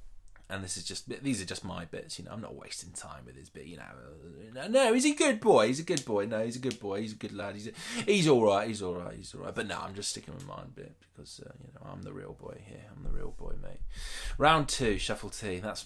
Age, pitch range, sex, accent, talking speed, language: 20-39, 90-120 Hz, male, British, 305 wpm, English